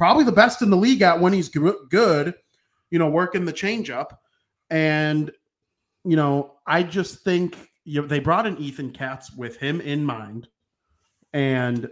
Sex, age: male, 30-49